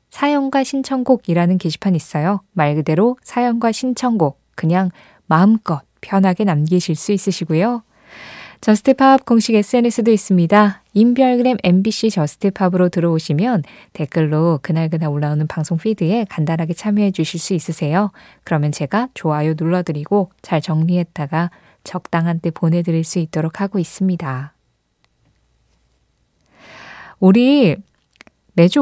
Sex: female